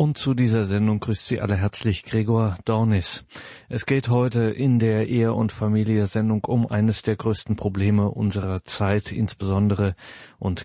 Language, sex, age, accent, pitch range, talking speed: German, male, 40-59, German, 105-120 Hz, 150 wpm